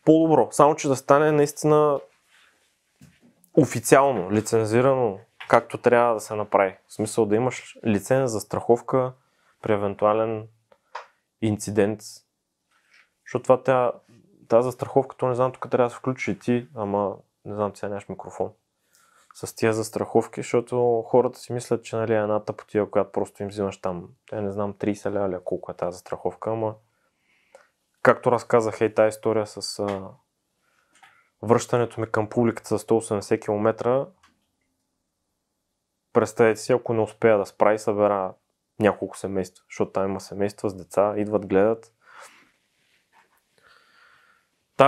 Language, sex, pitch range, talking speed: Bulgarian, male, 105-130 Hz, 135 wpm